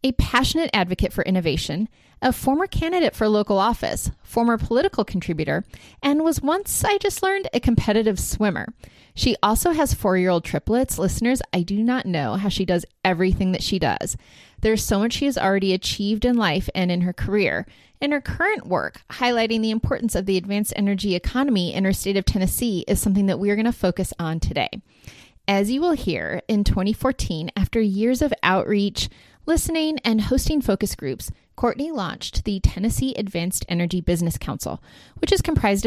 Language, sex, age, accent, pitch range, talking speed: English, female, 30-49, American, 180-240 Hz, 175 wpm